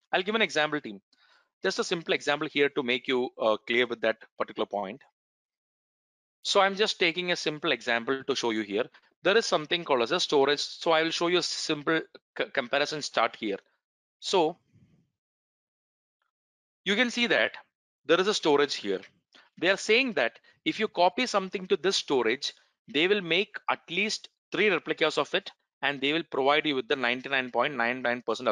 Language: English